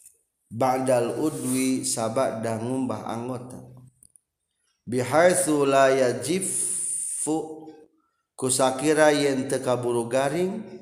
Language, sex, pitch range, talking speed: Indonesian, male, 115-150 Hz, 80 wpm